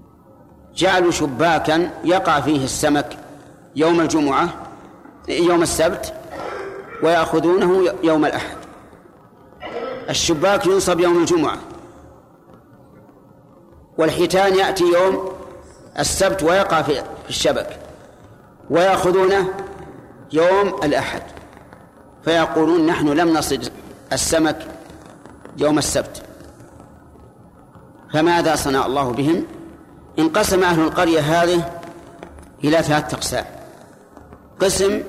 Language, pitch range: Arabic, 150-190 Hz